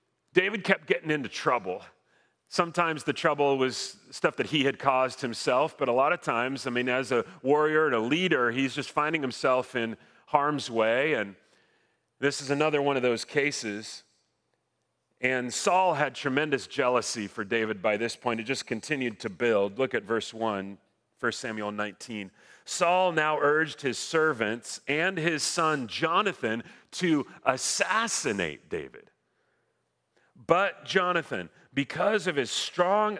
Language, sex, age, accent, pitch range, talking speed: English, male, 40-59, American, 115-165 Hz, 150 wpm